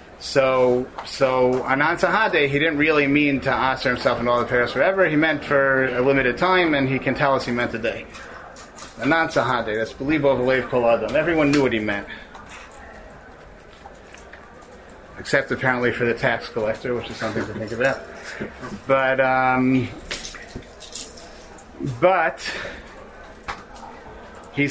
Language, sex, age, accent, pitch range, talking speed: English, male, 30-49, American, 125-150 Hz, 140 wpm